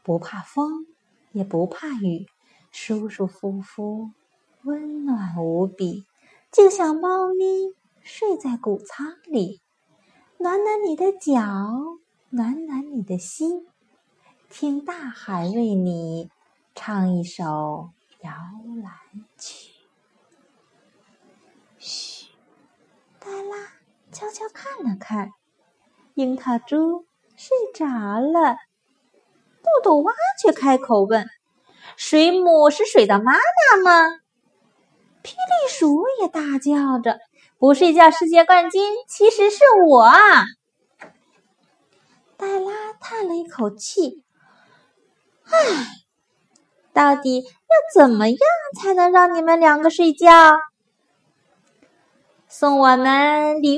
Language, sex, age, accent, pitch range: Chinese, female, 30-49, native, 225-350 Hz